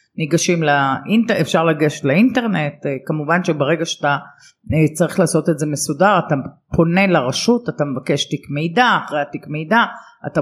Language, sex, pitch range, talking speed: Hebrew, female, 160-215 Hz, 140 wpm